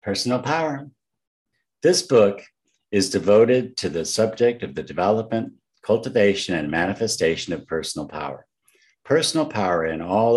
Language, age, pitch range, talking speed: English, 60-79, 90-110 Hz, 125 wpm